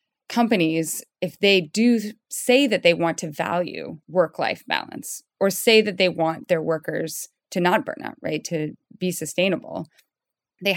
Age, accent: 20-39, American